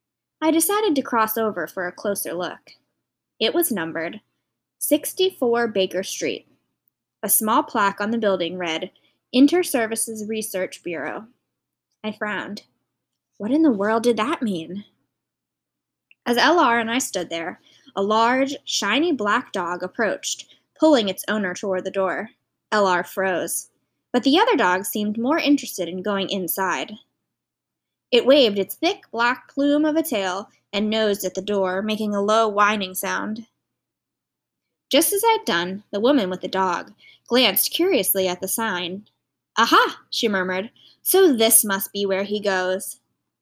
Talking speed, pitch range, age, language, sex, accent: 150 wpm, 185-235 Hz, 10-29, English, female, American